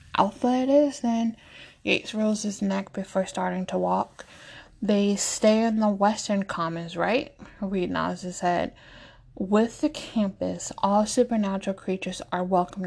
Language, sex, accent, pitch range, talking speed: English, female, American, 190-220 Hz, 140 wpm